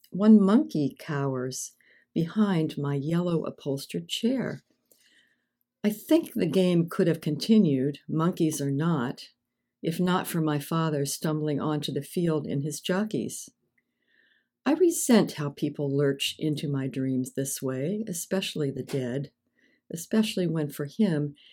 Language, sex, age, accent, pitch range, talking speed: English, female, 60-79, American, 145-185 Hz, 130 wpm